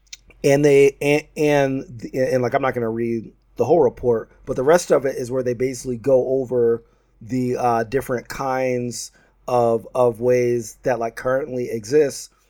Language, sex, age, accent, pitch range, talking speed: English, male, 30-49, American, 115-135 Hz, 170 wpm